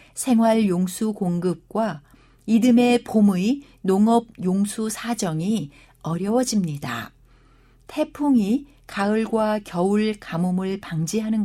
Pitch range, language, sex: 175-235 Hz, Korean, female